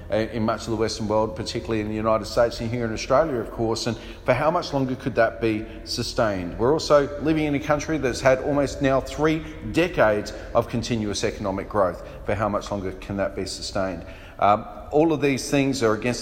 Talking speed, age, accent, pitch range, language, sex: 210 wpm, 40-59, Australian, 110-130 Hz, English, male